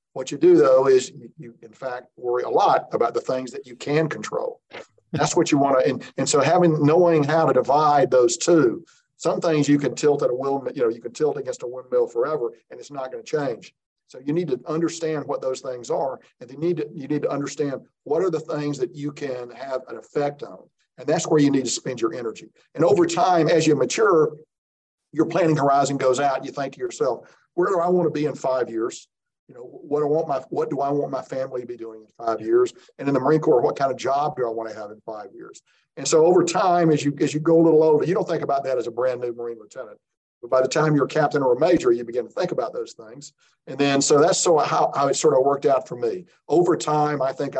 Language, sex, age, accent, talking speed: English, male, 50-69, American, 270 wpm